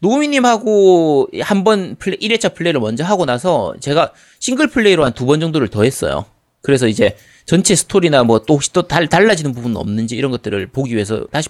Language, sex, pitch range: Korean, male, 135-215 Hz